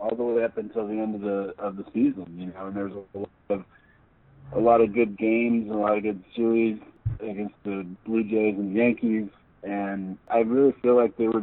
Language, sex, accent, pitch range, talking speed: English, male, American, 100-110 Hz, 220 wpm